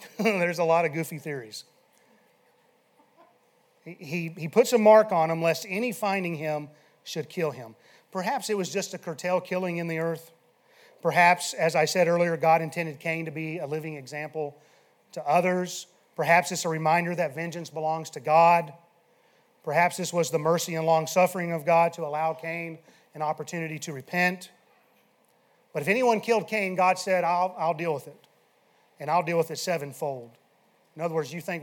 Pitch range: 160-185 Hz